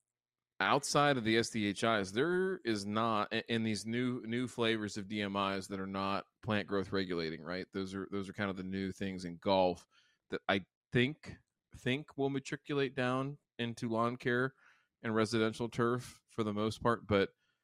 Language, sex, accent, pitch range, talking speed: English, male, American, 95-115 Hz, 170 wpm